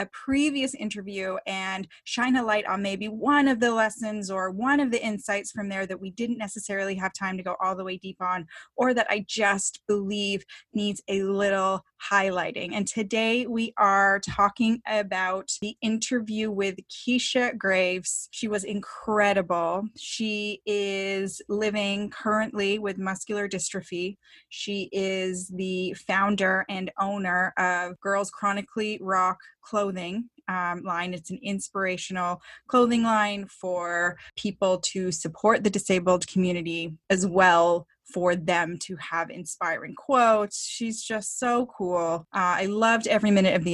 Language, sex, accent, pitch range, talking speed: English, female, American, 185-215 Hz, 145 wpm